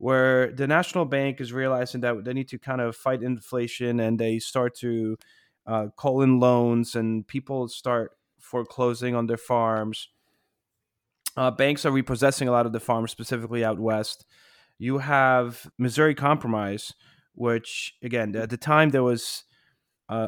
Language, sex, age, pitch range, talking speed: English, male, 30-49, 110-140 Hz, 155 wpm